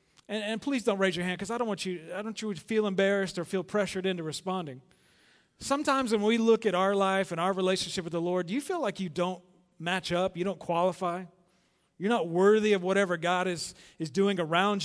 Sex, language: male, English